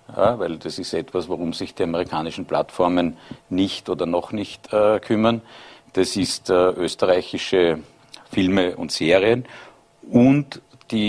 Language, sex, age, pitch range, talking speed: German, male, 50-69, 90-100 Hz, 130 wpm